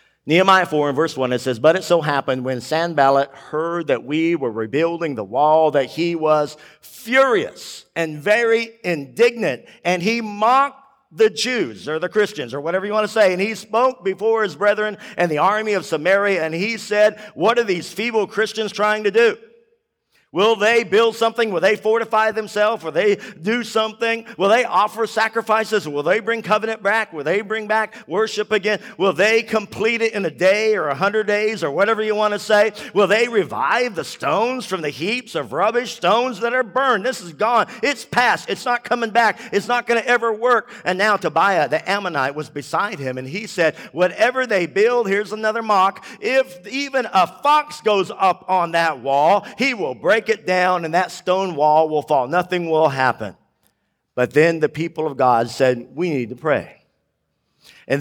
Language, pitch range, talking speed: English, 165-225 Hz, 195 wpm